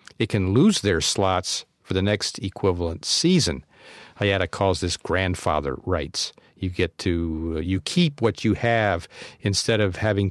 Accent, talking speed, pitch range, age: American, 150 wpm, 90-110 Hz, 50-69